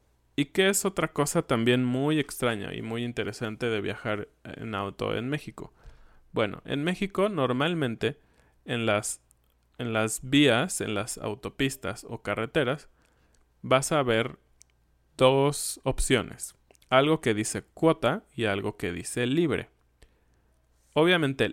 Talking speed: 130 wpm